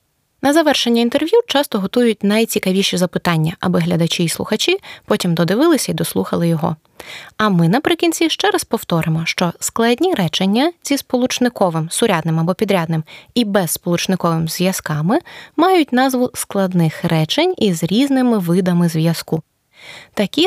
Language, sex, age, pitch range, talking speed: Ukrainian, female, 20-39, 170-265 Hz, 125 wpm